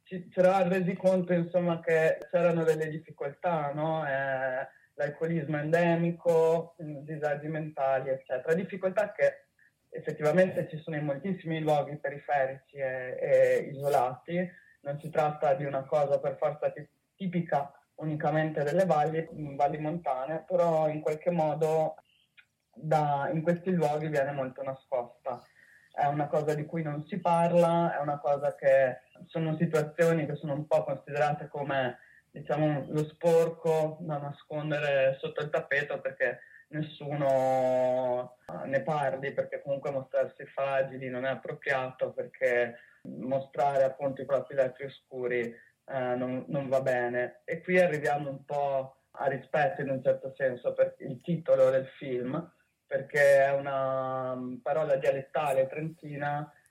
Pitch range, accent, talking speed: 135-165 Hz, native, 135 wpm